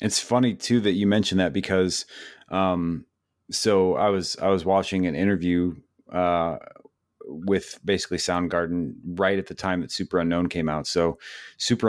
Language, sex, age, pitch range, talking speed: English, male, 30-49, 85-95 Hz, 160 wpm